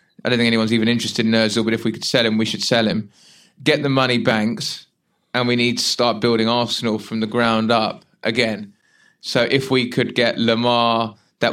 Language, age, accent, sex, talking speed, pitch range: English, 20-39, British, male, 215 wpm, 110-120 Hz